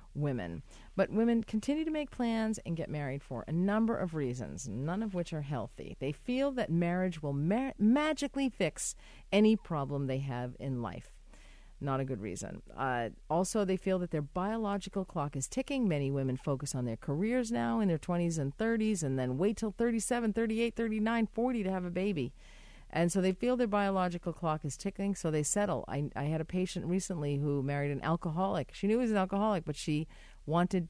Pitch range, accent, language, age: 150-210 Hz, American, English, 40-59